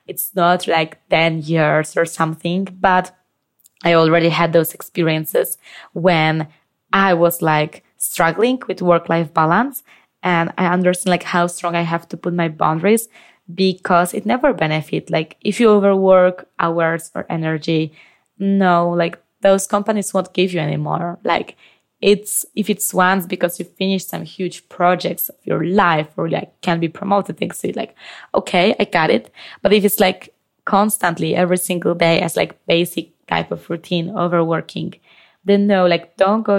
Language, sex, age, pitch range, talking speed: English, female, 20-39, 165-190 Hz, 160 wpm